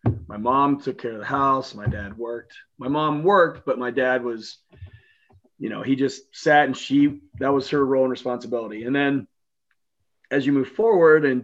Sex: male